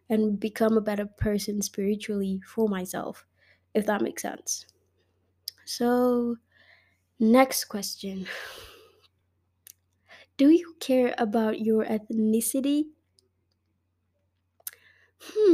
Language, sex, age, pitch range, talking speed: English, female, 20-39, 200-255 Hz, 90 wpm